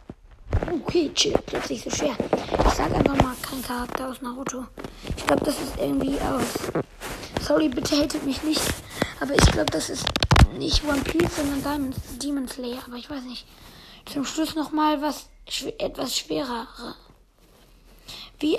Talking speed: 150 wpm